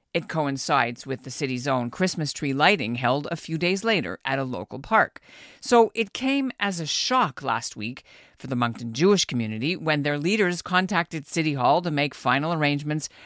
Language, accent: English, American